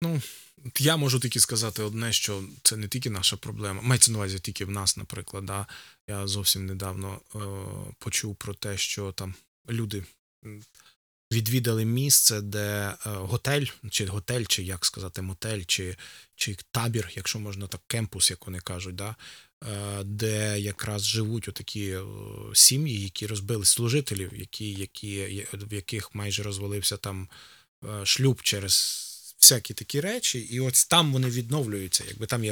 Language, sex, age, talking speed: Ukrainian, male, 20-39, 150 wpm